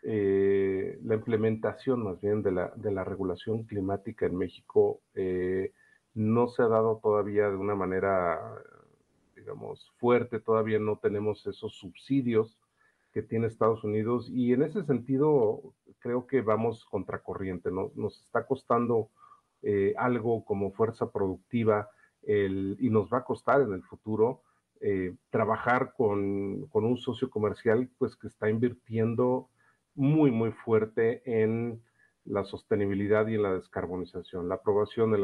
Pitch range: 100-125 Hz